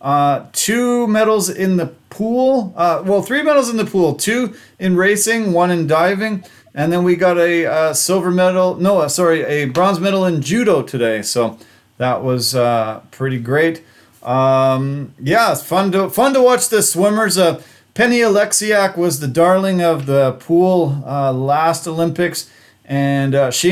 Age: 30-49